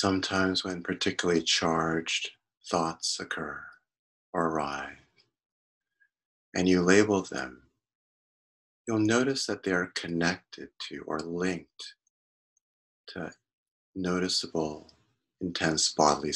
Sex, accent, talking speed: male, American, 90 wpm